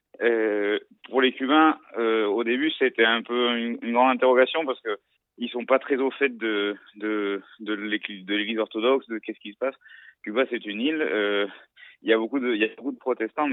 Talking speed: 200 wpm